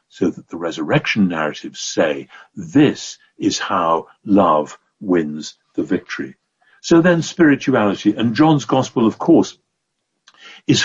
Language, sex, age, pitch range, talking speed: English, male, 60-79, 100-130 Hz, 120 wpm